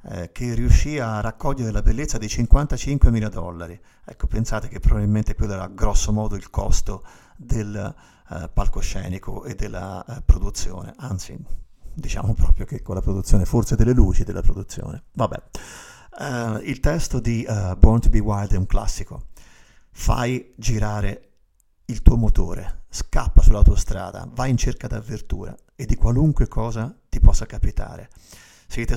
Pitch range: 95-120 Hz